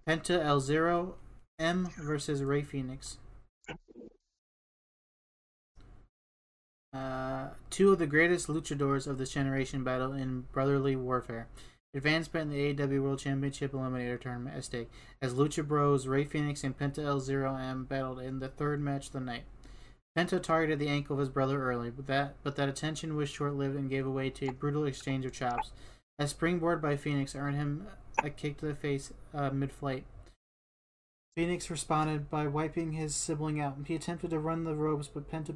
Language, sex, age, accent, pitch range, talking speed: English, male, 20-39, American, 130-150 Hz, 170 wpm